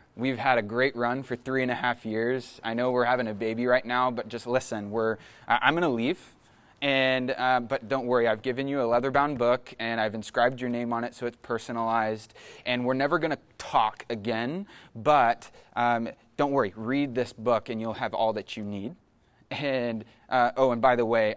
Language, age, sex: English, 20-39, male